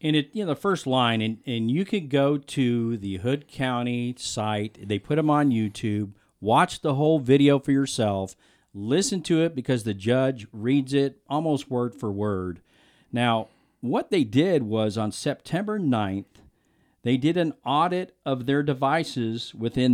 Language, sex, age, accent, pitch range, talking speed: English, male, 50-69, American, 105-145 Hz, 160 wpm